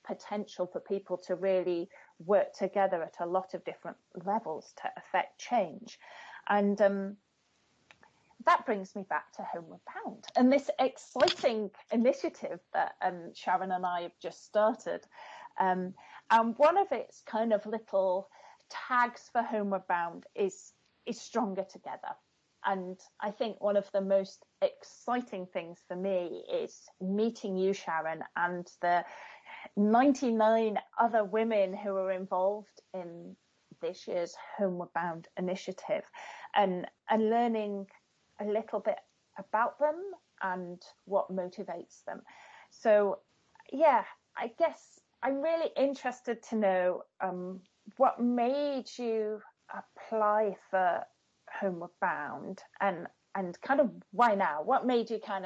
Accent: British